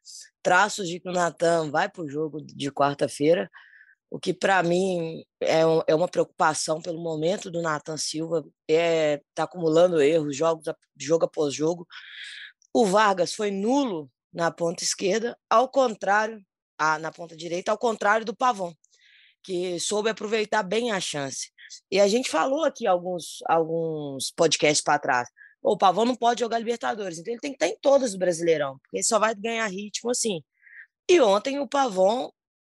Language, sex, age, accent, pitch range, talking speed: Portuguese, female, 20-39, Brazilian, 160-225 Hz, 170 wpm